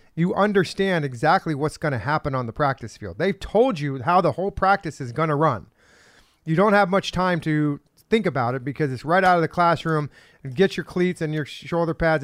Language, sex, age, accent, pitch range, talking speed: English, male, 40-59, American, 145-195 Hz, 215 wpm